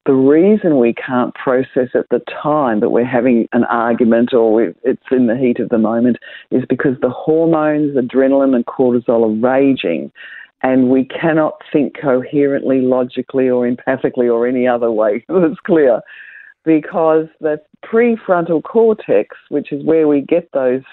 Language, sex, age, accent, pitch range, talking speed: English, female, 50-69, Australian, 125-155 Hz, 155 wpm